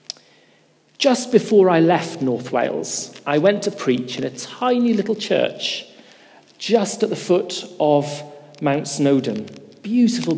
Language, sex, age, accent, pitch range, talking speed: English, male, 40-59, British, 155-210 Hz, 135 wpm